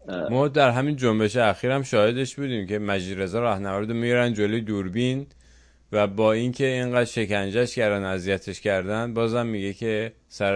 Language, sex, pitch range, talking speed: English, male, 100-120 Hz, 155 wpm